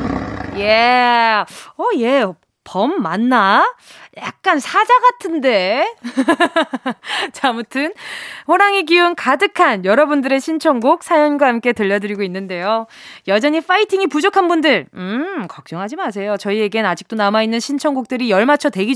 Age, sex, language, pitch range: 20-39, female, Korean, 220-320 Hz